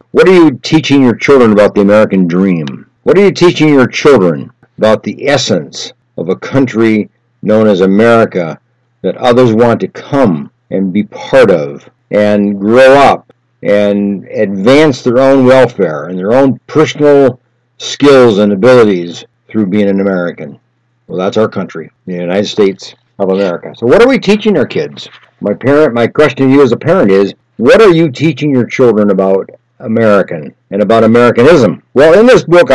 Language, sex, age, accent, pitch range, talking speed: English, male, 60-79, American, 105-145 Hz, 170 wpm